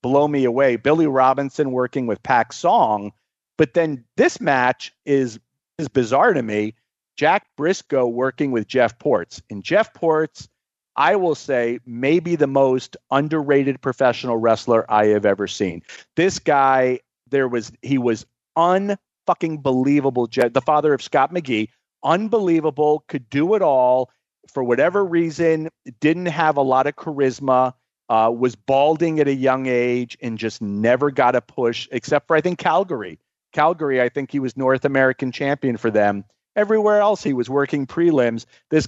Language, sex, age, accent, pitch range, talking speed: English, male, 40-59, American, 120-150 Hz, 160 wpm